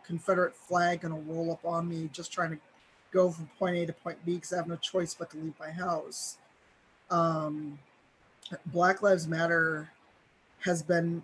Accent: American